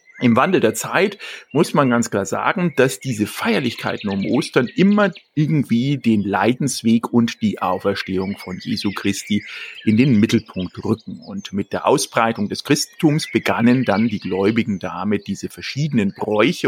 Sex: male